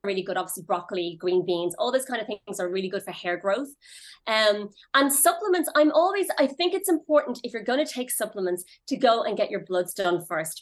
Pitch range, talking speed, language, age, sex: 185-250 Hz, 220 wpm, English, 30-49, female